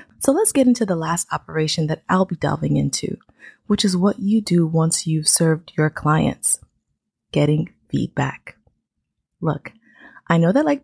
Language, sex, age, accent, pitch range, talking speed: English, female, 20-39, American, 170-225 Hz, 160 wpm